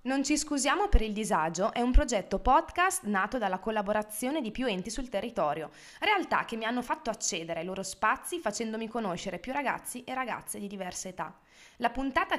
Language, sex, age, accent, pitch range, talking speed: Italian, female, 20-39, native, 195-260 Hz, 185 wpm